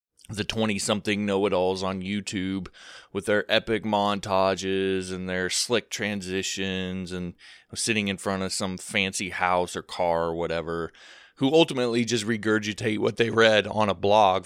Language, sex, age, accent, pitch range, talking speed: English, male, 20-39, American, 90-110 Hz, 145 wpm